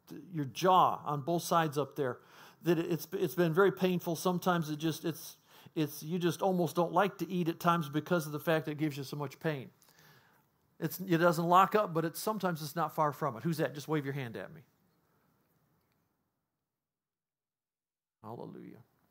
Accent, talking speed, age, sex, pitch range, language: American, 190 wpm, 50-69, male, 145-170 Hz, English